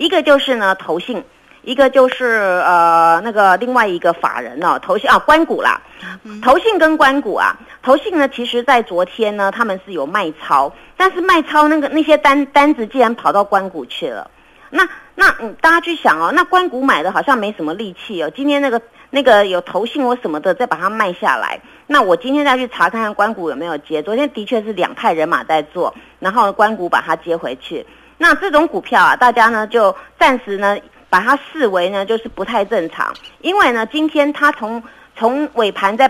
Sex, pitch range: female, 195-285 Hz